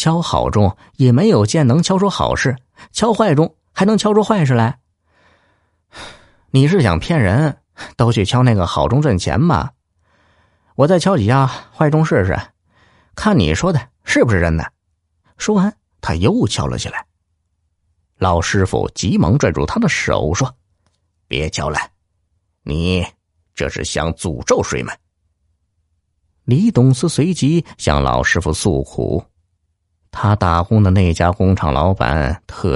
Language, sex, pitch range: Chinese, male, 85-120 Hz